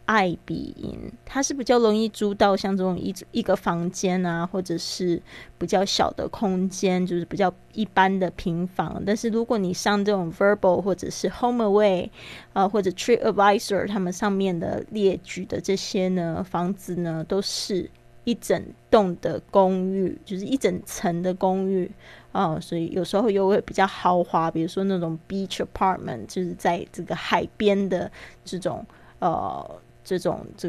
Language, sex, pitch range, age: Chinese, female, 180-205 Hz, 20-39